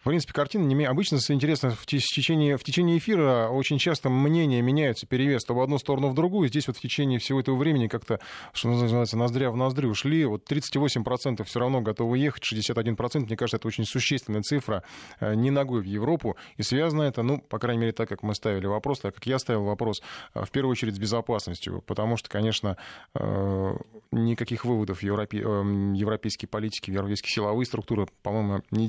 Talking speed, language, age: 175 wpm, Russian, 20-39